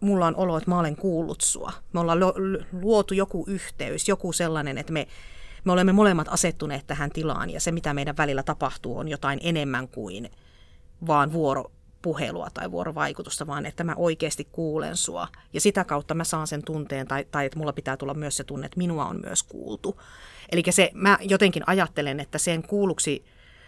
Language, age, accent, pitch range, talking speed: Finnish, 30-49, native, 145-180 Hz, 180 wpm